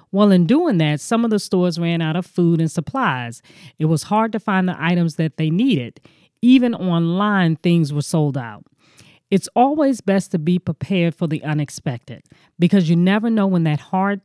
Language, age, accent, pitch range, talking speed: English, 40-59, American, 160-205 Hz, 195 wpm